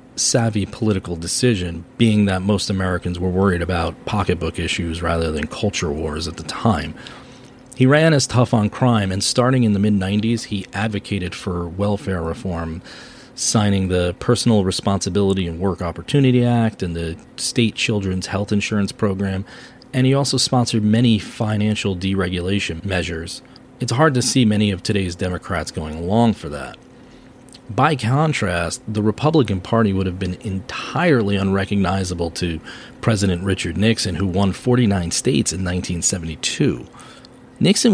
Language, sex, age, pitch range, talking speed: English, male, 40-59, 90-115 Hz, 145 wpm